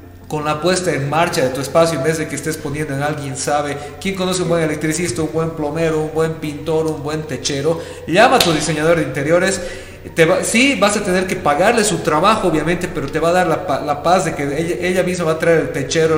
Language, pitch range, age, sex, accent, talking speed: Spanish, 145-185 Hz, 40-59, male, Mexican, 235 wpm